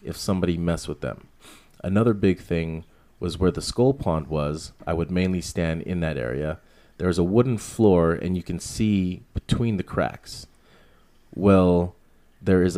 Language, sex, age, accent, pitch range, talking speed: English, male, 30-49, American, 85-100 Hz, 165 wpm